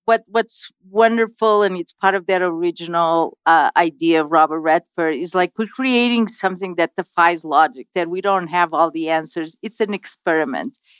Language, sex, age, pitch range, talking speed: English, female, 40-59, 170-215 Hz, 175 wpm